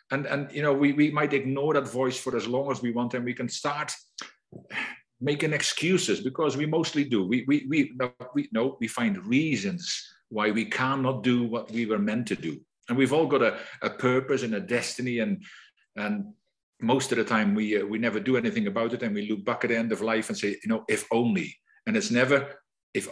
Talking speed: 230 wpm